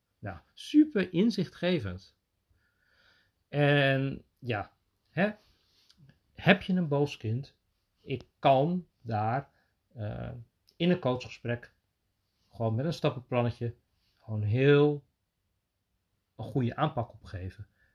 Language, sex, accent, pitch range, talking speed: Dutch, male, Dutch, 105-145 Hz, 90 wpm